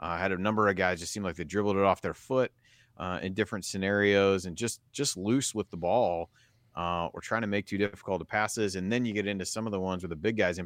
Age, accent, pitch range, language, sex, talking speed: 30-49, American, 90-115 Hz, English, male, 275 wpm